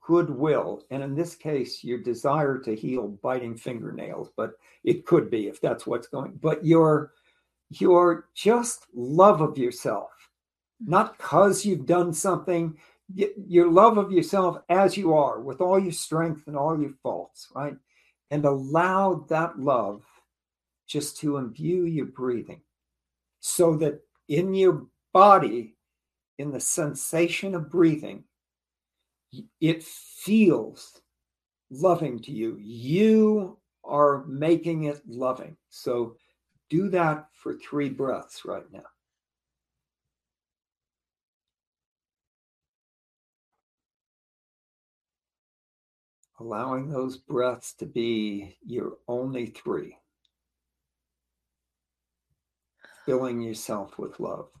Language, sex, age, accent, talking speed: English, male, 60-79, American, 105 wpm